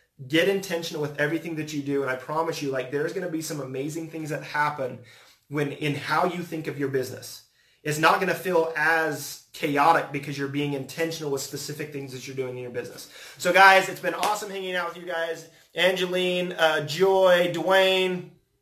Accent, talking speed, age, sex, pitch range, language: American, 205 wpm, 30-49, male, 145-180 Hz, English